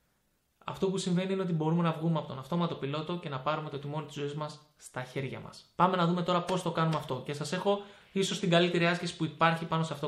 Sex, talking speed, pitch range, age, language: male, 255 wpm, 155-195 Hz, 20-39, Greek